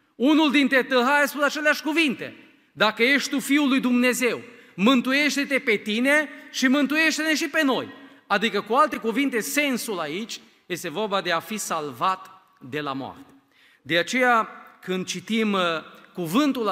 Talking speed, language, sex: 145 wpm, Romanian, male